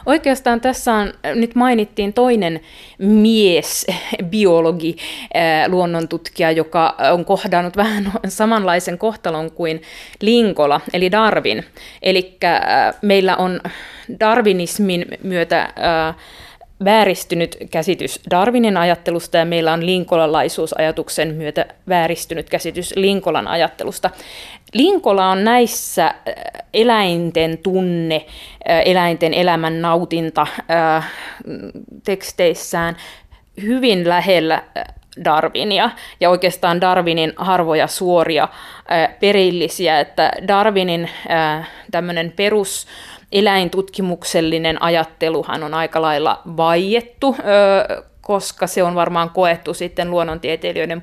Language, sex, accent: Finnish, female, native